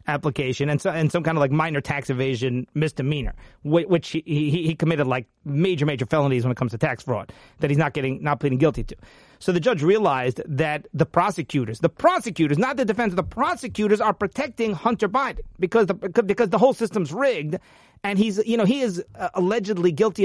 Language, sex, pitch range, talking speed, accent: English, male, 155-205 Hz, 205 wpm, American